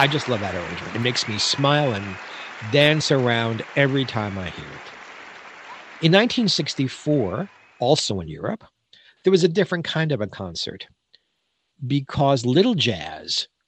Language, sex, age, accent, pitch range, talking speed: English, male, 50-69, American, 115-155 Hz, 145 wpm